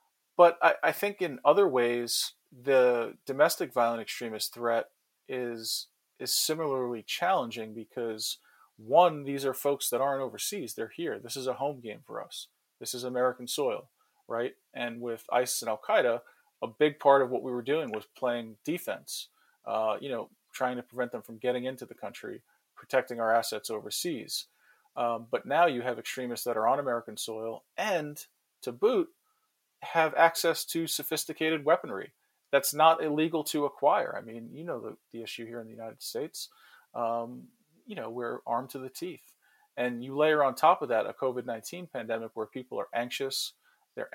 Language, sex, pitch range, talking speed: English, male, 115-155 Hz, 175 wpm